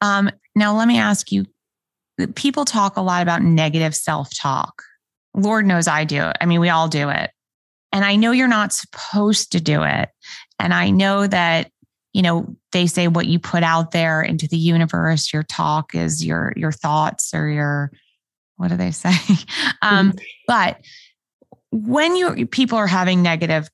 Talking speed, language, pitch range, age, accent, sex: 170 wpm, English, 155-200 Hz, 20-39, American, female